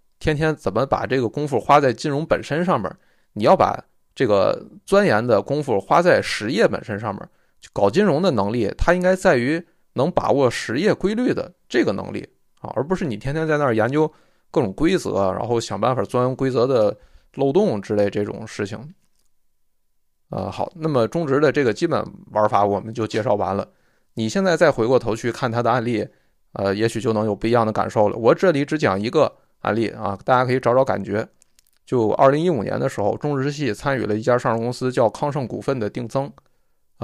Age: 20-39